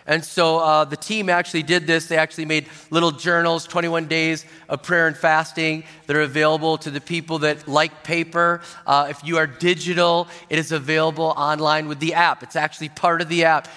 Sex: male